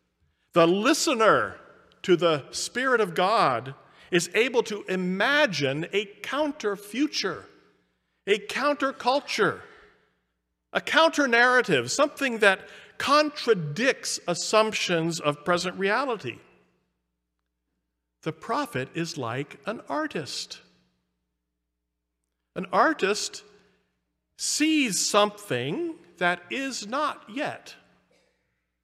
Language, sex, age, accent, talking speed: English, male, 50-69, American, 80 wpm